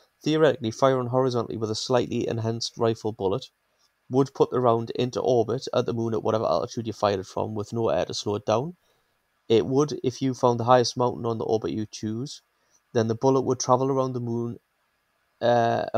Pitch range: 110-125 Hz